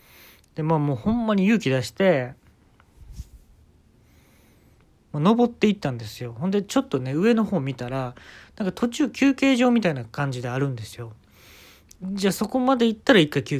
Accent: native